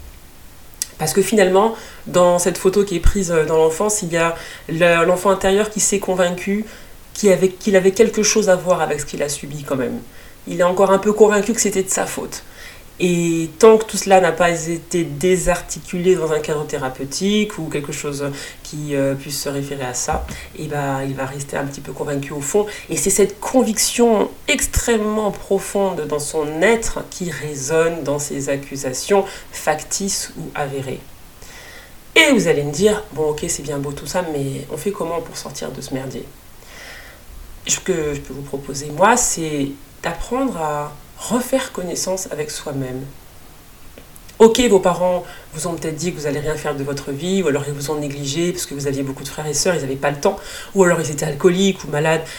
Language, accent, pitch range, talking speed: French, French, 145-195 Hz, 195 wpm